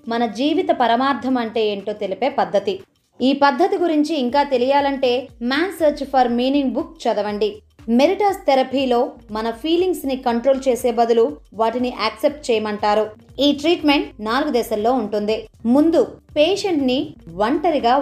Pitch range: 230-295 Hz